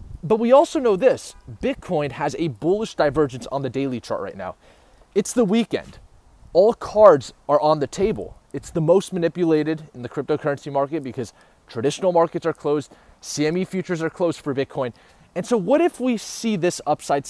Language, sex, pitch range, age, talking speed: English, male, 130-180 Hz, 20-39, 180 wpm